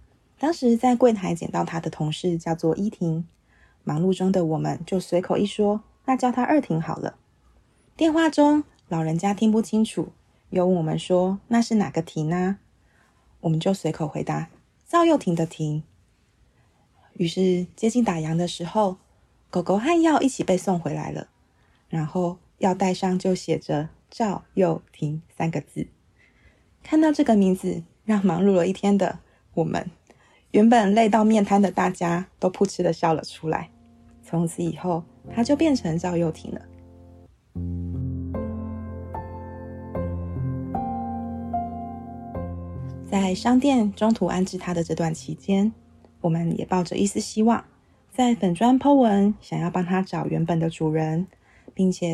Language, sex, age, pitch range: Chinese, female, 20-39, 160-210 Hz